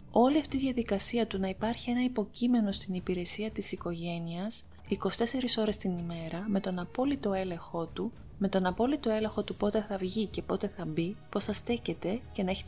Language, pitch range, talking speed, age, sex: Greek, 175-220 Hz, 190 wpm, 20-39, female